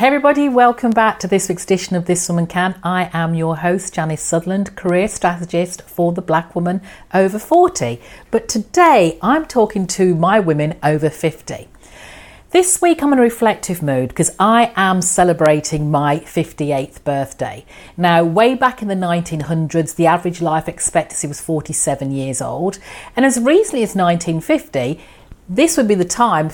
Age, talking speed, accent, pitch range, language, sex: 40-59, 165 wpm, British, 165-230 Hz, English, female